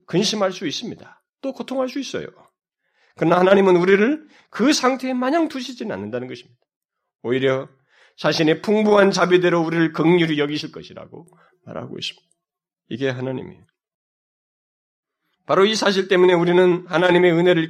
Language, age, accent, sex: Korean, 30-49, native, male